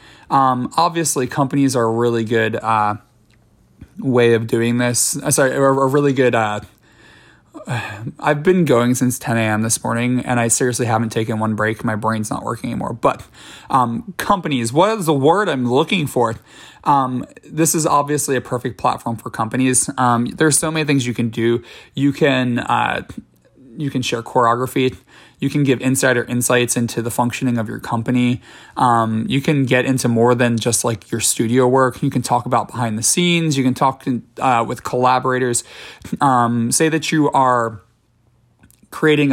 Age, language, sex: 20-39, English, male